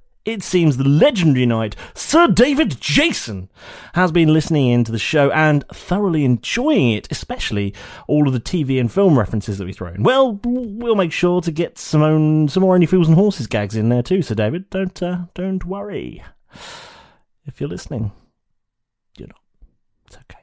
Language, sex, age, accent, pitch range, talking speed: English, male, 30-49, British, 120-190 Hz, 180 wpm